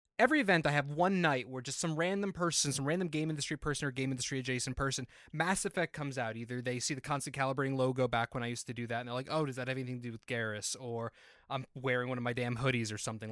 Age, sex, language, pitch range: 20-39, male, English, 125-165 Hz